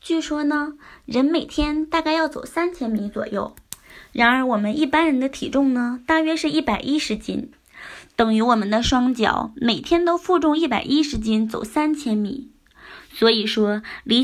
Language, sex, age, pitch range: Chinese, female, 20-39, 225-310 Hz